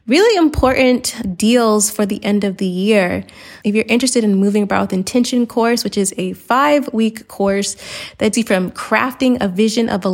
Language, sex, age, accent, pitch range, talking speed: English, female, 20-39, American, 200-250 Hz, 185 wpm